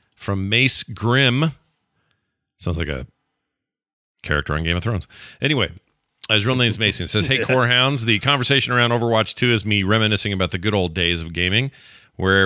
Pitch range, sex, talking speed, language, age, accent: 95-120 Hz, male, 185 wpm, English, 40-59, American